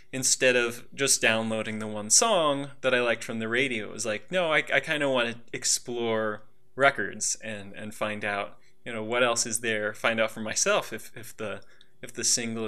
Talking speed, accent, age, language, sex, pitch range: 215 wpm, American, 20-39, English, male, 110-125 Hz